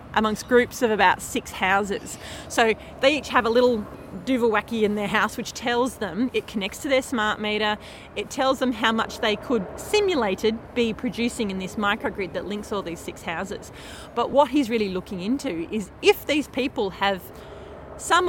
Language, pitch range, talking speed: English, 205-260 Hz, 185 wpm